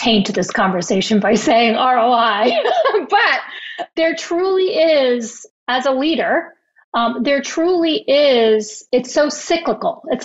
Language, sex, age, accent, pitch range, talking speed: English, female, 30-49, American, 220-270 Hz, 125 wpm